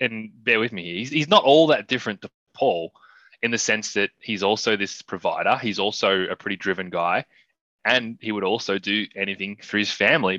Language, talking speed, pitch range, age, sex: English, 195 wpm, 100-125 Hz, 20-39, male